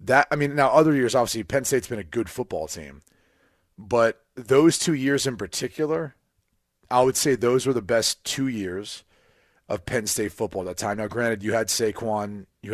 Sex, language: male, English